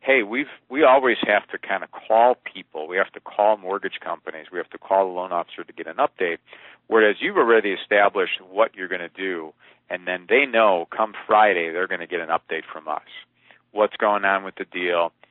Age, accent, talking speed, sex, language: 50-69, American, 220 wpm, male, English